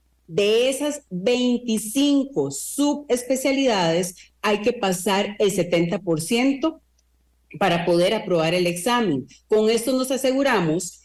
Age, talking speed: 40-59, 100 wpm